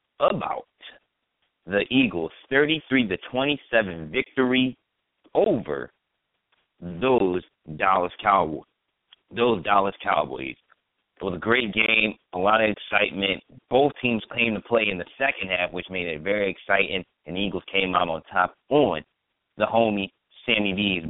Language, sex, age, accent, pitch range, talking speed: English, male, 30-49, American, 90-120 Hz, 140 wpm